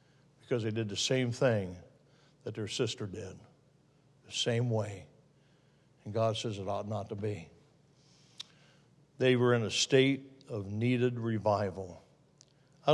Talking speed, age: 135 wpm, 60-79